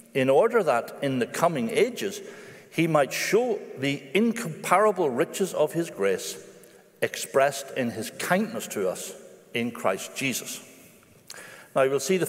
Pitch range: 130-200 Hz